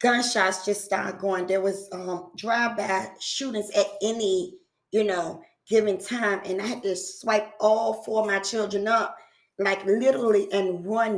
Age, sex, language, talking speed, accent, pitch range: 20-39, female, English, 160 wpm, American, 190-230 Hz